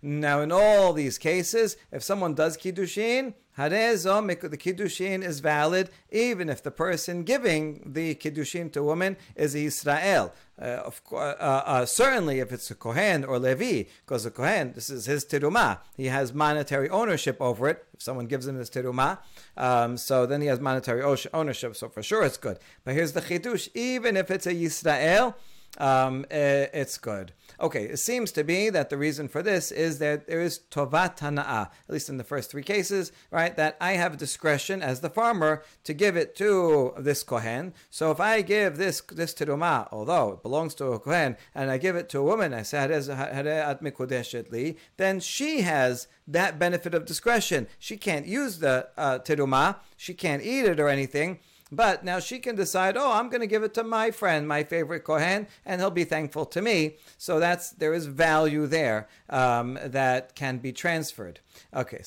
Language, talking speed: English, 190 wpm